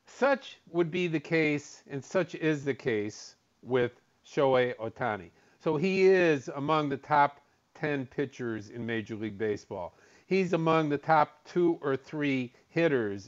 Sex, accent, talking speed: male, American, 150 wpm